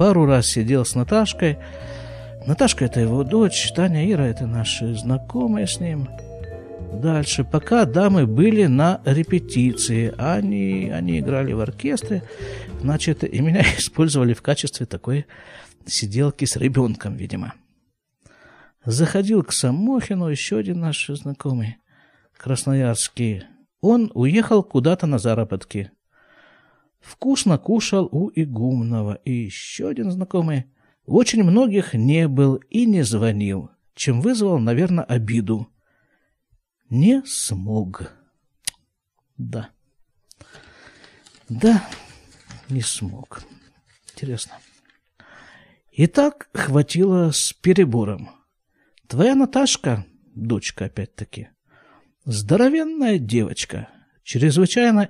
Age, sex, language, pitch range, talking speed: 50-69, male, Russian, 115-180 Hz, 95 wpm